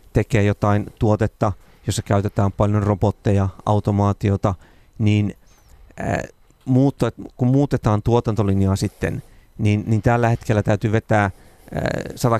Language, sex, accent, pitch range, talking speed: Finnish, male, native, 100-115 Hz, 110 wpm